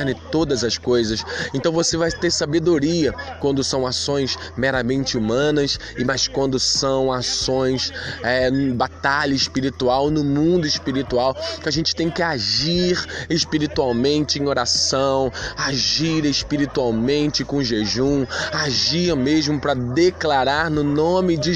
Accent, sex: Brazilian, male